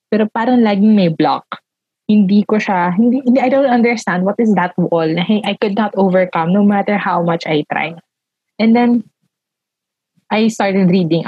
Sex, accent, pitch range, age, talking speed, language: female, native, 165-210 Hz, 20-39, 180 wpm, Filipino